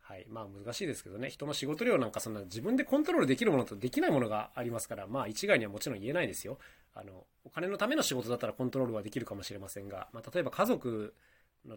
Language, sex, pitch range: Japanese, male, 105-140 Hz